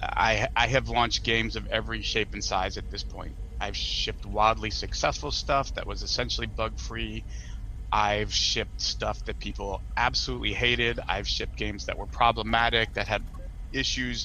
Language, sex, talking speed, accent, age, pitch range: English, male, 160 wpm, American, 30-49, 100-120 Hz